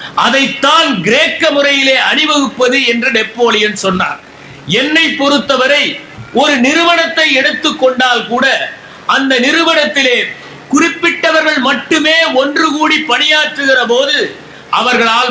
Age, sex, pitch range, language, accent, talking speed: 50-69, male, 235-300 Hz, Tamil, native, 45 wpm